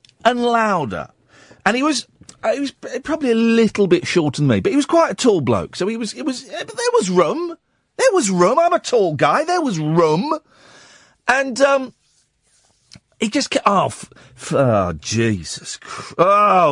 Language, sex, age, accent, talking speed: English, male, 50-69, British, 165 wpm